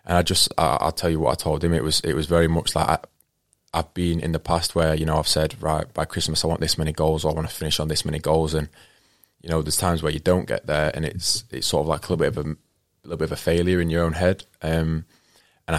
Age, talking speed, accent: 20-39, 290 wpm, British